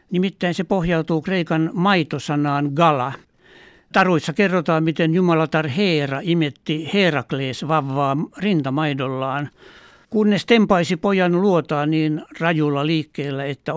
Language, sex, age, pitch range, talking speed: Finnish, male, 60-79, 145-175 Hz, 100 wpm